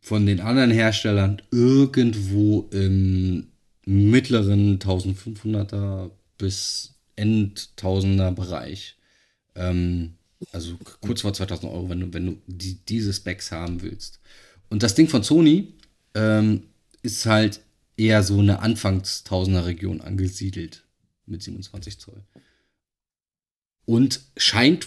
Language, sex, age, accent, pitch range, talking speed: German, male, 30-49, German, 95-110 Hz, 110 wpm